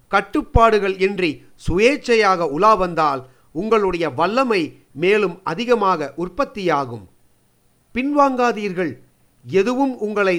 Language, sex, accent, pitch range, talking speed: Tamil, male, native, 165-220 Hz, 70 wpm